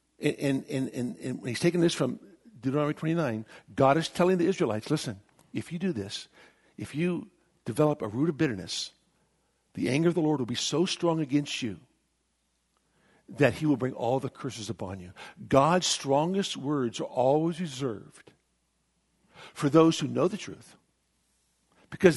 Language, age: English, 60-79